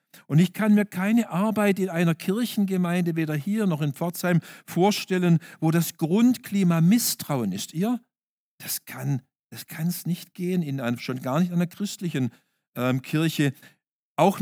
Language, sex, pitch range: German, male, 150-190 Hz